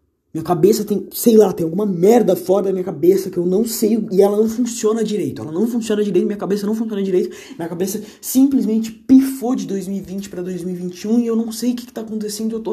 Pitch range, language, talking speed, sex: 120-205 Hz, Portuguese, 230 wpm, male